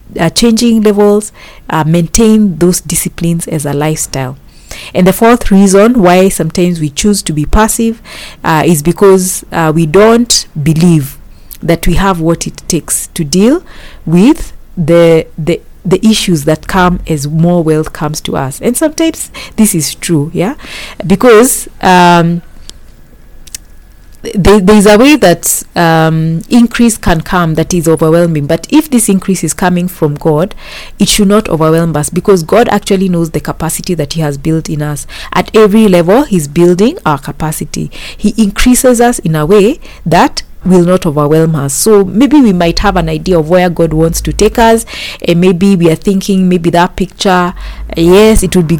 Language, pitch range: English, 160-205 Hz